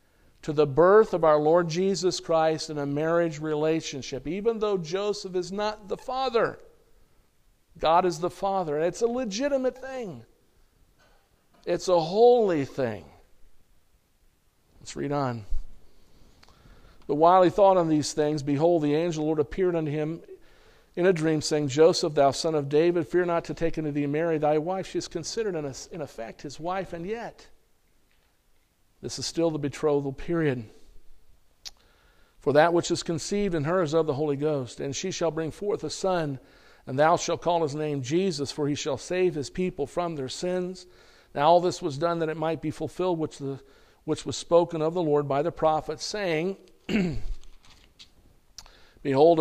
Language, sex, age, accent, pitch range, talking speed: English, male, 50-69, American, 145-180 Hz, 170 wpm